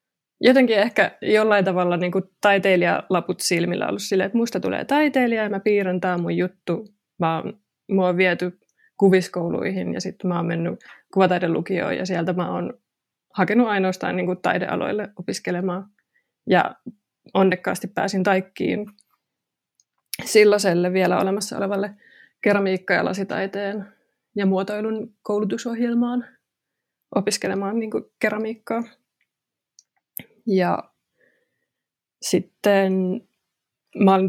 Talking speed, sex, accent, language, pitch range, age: 105 wpm, female, native, Finnish, 185-210 Hz, 20-39